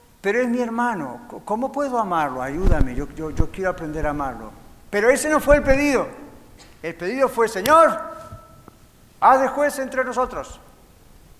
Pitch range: 155-215 Hz